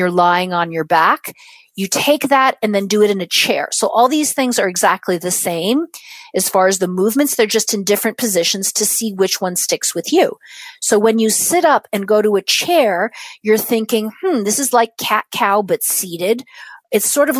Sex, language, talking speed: female, English, 215 wpm